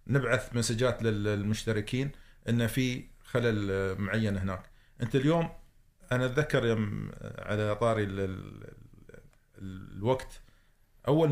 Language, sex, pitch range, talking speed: Arabic, male, 110-140 Hz, 85 wpm